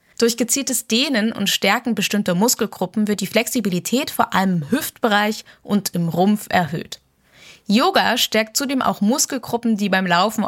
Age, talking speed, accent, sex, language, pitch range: 10-29, 150 wpm, German, female, German, 185-235 Hz